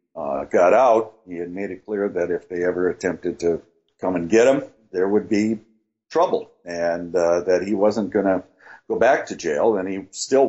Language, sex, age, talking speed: English, male, 50-69, 205 wpm